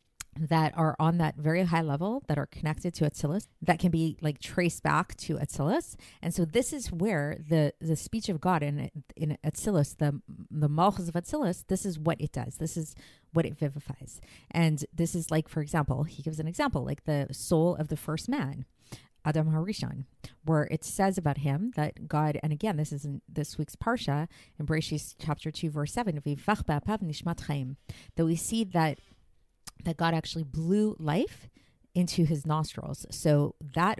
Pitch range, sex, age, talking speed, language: 150-175 Hz, female, 30-49, 180 wpm, English